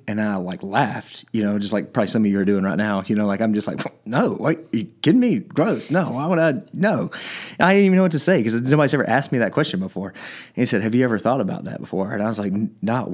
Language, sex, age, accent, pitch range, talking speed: English, male, 30-49, American, 100-120 Hz, 295 wpm